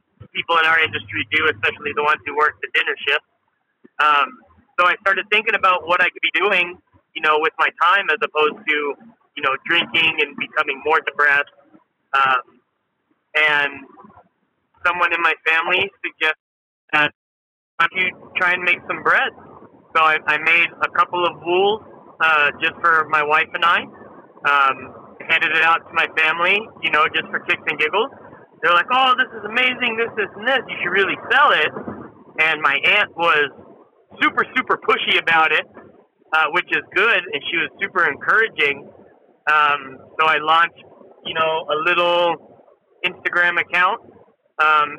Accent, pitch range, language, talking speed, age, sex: American, 155-180 Hz, English, 170 wpm, 30-49, male